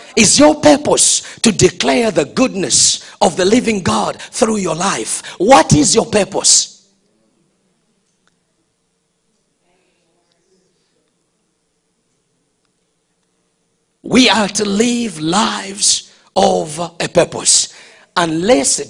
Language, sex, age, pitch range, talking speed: English, male, 50-69, 170-255 Hz, 85 wpm